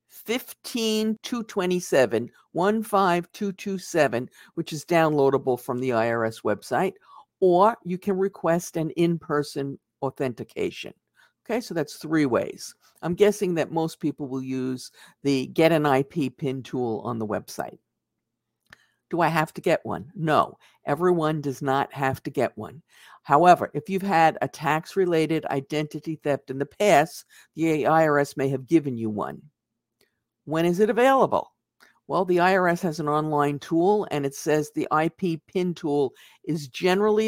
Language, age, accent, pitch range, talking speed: English, 50-69, American, 140-180 Hz, 145 wpm